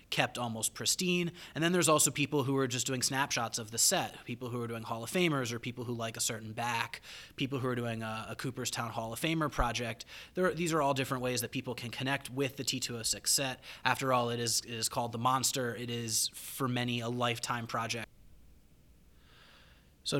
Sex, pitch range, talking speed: male, 115-130 Hz, 210 wpm